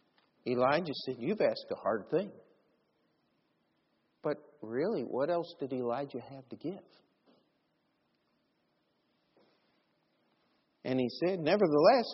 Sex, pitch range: male, 125-165 Hz